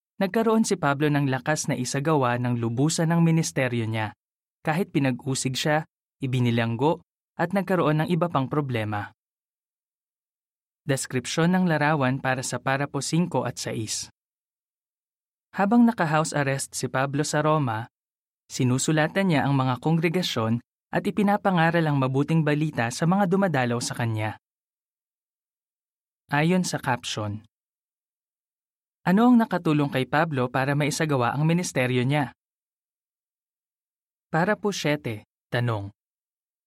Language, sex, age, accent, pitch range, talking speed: Filipino, male, 20-39, native, 125-170 Hz, 110 wpm